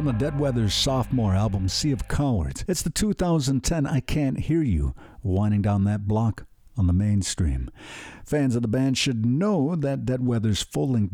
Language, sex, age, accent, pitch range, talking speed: English, male, 50-69, American, 100-140 Hz, 165 wpm